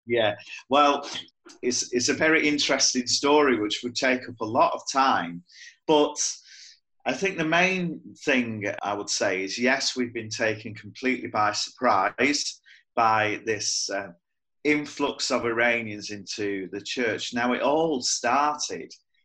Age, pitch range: 30-49, 110-150 Hz